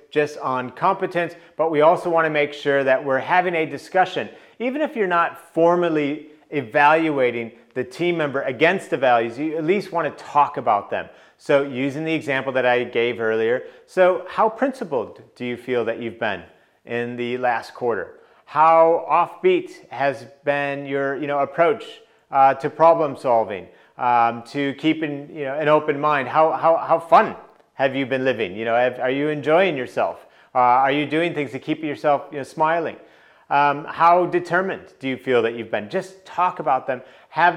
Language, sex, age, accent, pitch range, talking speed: English, male, 30-49, American, 130-170 Hz, 180 wpm